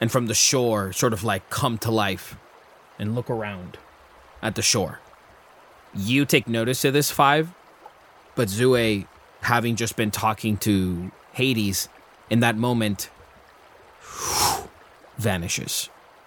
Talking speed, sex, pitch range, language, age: 125 wpm, male, 105-125 Hz, English, 20-39